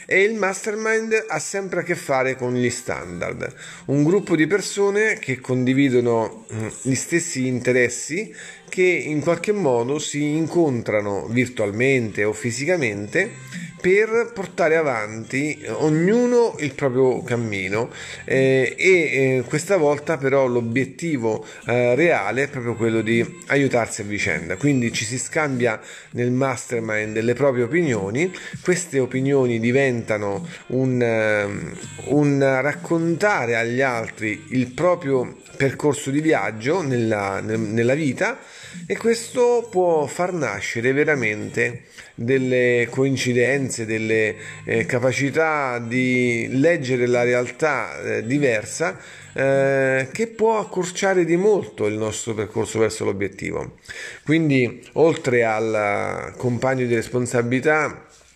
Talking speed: 110 wpm